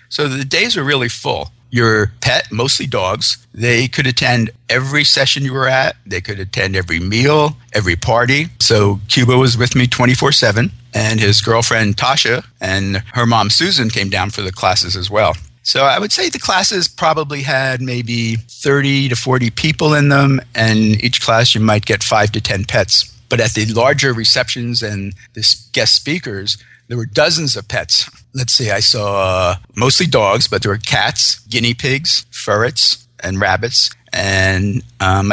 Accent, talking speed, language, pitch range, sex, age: American, 175 wpm, English, 110-135 Hz, male, 50-69